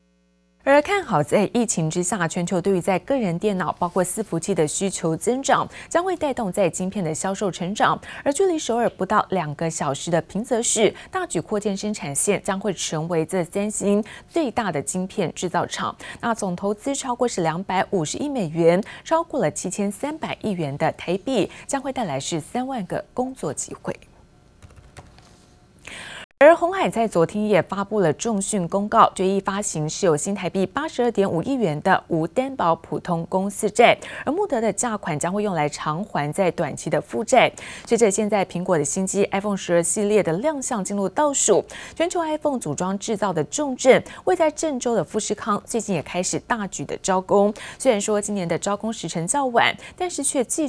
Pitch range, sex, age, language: 175-240 Hz, female, 20-39, Chinese